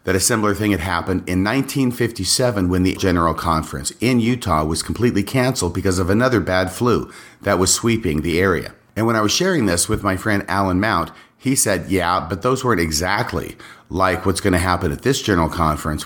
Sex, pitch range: male, 90-115 Hz